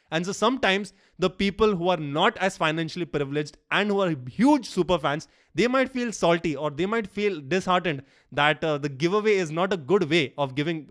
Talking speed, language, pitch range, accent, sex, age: 205 wpm, English, 145-185 Hz, Indian, male, 20-39